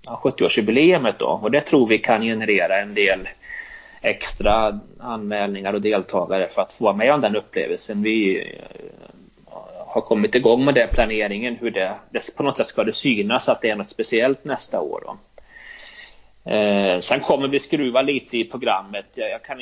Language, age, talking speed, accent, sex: Swedish, 30-49, 175 wpm, native, male